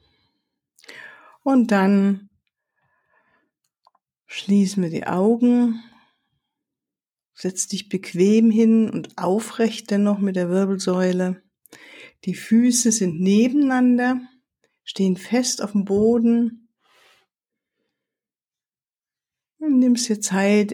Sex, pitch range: female, 185-230 Hz